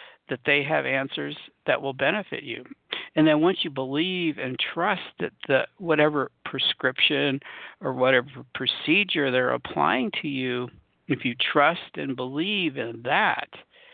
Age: 60-79